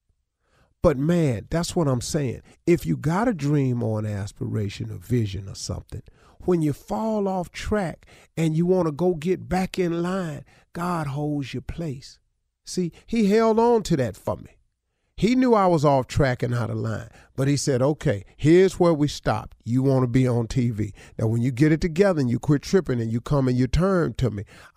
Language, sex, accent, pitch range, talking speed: English, male, American, 110-145 Hz, 210 wpm